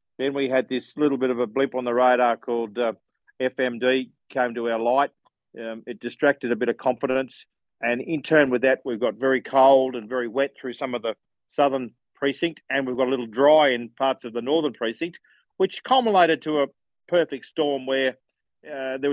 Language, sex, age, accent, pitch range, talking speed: English, male, 40-59, Australian, 125-145 Hz, 205 wpm